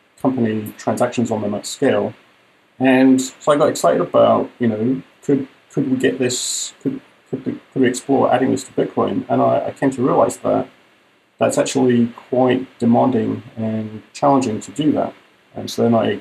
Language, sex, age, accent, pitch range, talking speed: English, male, 30-49, British, 110-130 Hz, 180 wpm